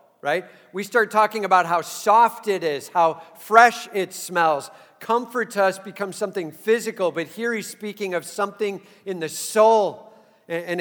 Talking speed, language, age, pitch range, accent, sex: 160 wpm, English, 50-69, 165-210 Hz, American, male